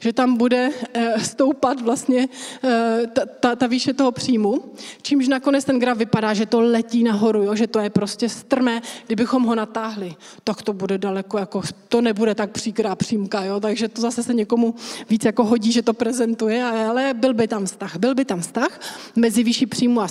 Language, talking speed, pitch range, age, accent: Czech, 190 wpm, 210-245 Hz, 30-49, native